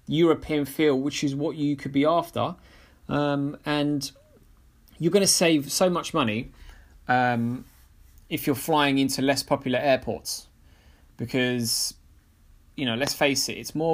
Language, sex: English, male